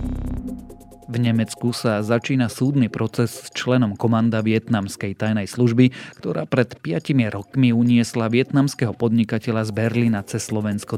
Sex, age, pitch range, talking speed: male, 30-49, 110-125 Hz, 125 wpm